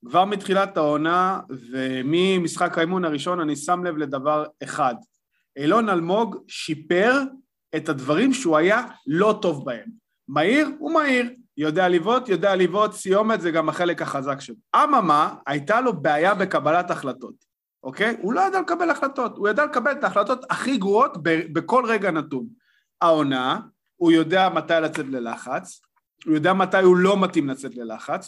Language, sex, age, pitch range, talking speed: Hebrew, male, 30-49, 155-220 Hz, 150 wpm